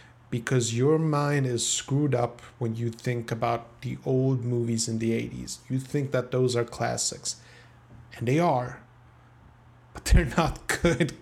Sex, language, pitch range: male, English, 120-140 Hz